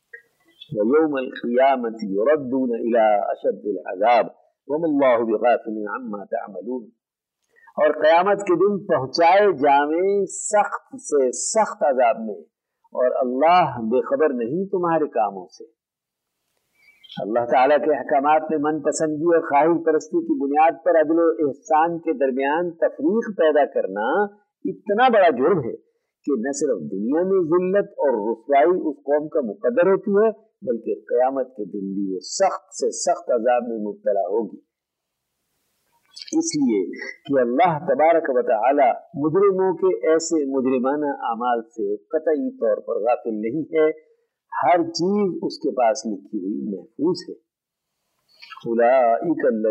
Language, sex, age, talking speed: Urdu, male, 50-69, 135 wpm